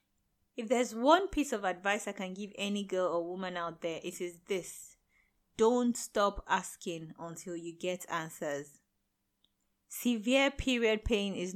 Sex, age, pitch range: female, 20-39, 175-220 Hz